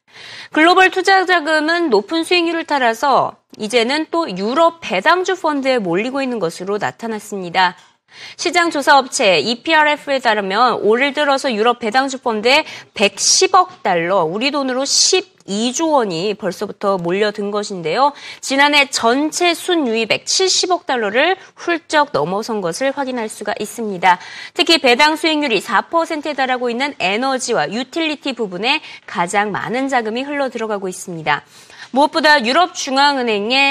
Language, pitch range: Korean, 215-315 Hz